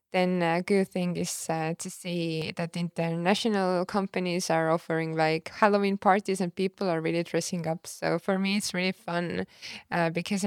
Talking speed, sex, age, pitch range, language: 170 wpm, female, 20-39, 165-190 Hz, English